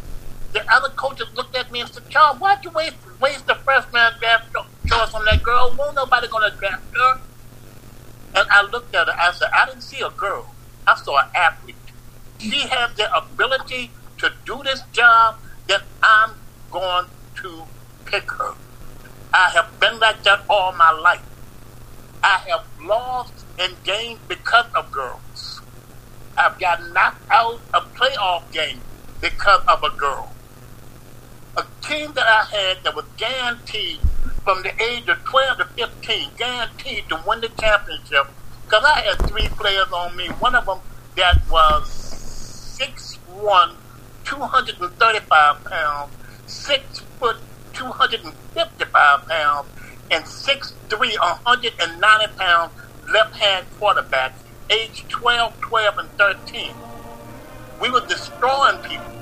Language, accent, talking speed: English, American, 140 wpm